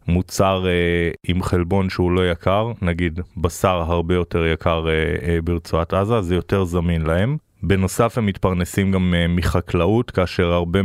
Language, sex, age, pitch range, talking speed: Hebrew, male, 20-39, 90-105 Hz, 135 wpm